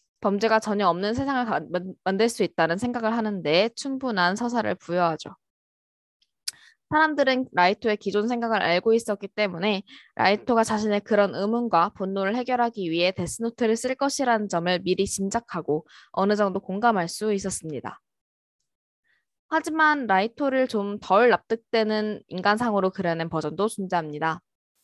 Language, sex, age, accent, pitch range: Korean, female, 20-39, native, 190-245 Hz